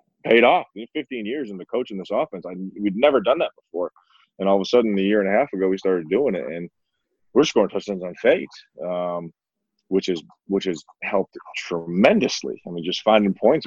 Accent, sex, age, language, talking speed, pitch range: American, male, 20-39, English, 205 wpm, 85-100 Hz